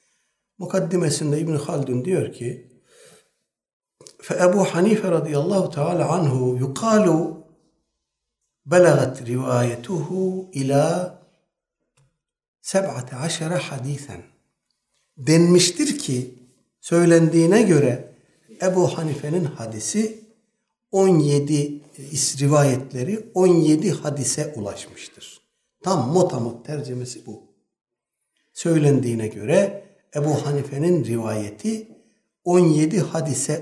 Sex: male